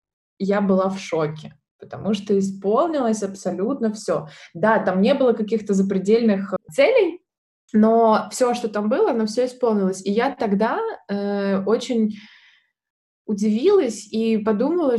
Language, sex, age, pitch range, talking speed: Russian, female, 20-39, 185-220 Hz, 130 wpm